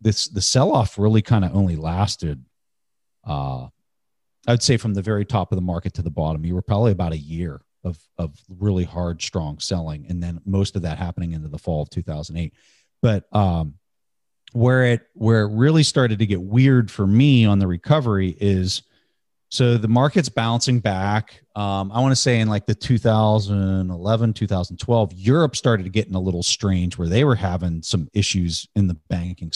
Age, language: 40-59, English